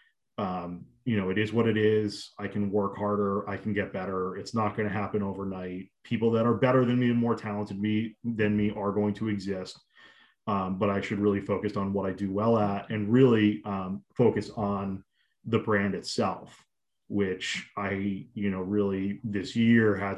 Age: 30-49